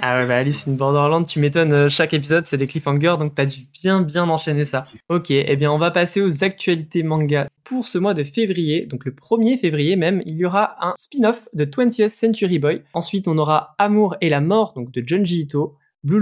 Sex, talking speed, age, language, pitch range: male, 220 wpm, 20-39, French, 145-200 Hz